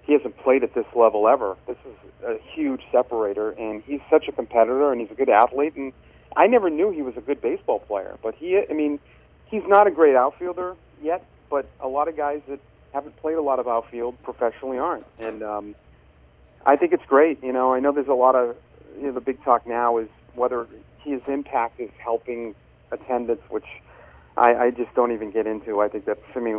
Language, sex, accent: English, male, American